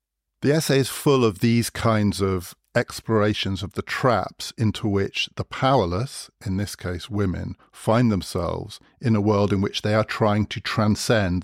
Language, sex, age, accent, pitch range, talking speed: English, male, 50-69, British, 95-120 Hz, 170 wpm